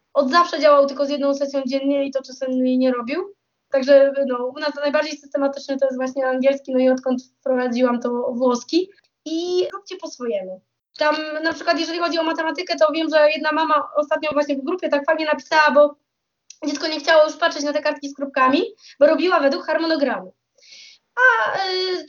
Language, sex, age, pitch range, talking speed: Polish, female, 20-39, 280-325 Hz, 195 wpm